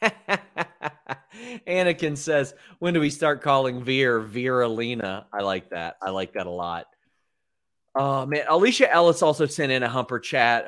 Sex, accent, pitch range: male, American, 105-150 Hz